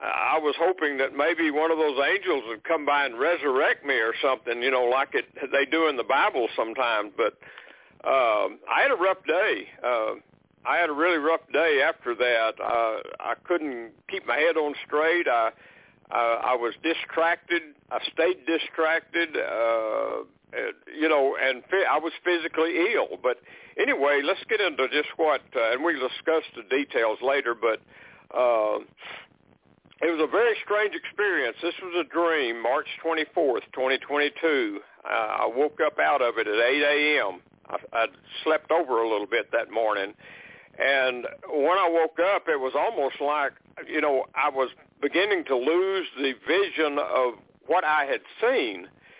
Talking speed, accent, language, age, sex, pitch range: 170 wpm, American, English, 60-79, male, 140-185 Hz